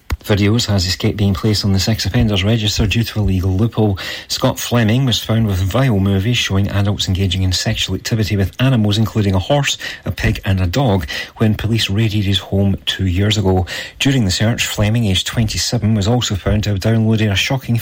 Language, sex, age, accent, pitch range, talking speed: English, male, 30-49, British, 100-120 Hz, 200 wpm